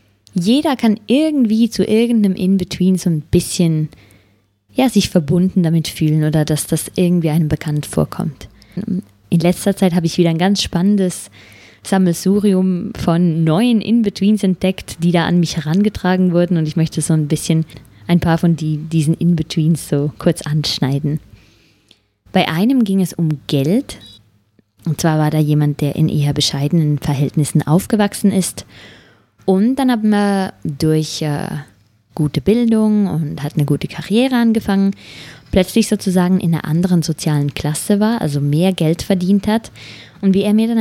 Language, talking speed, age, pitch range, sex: English, 155 wpm, 20-39, 155-195 Hz, female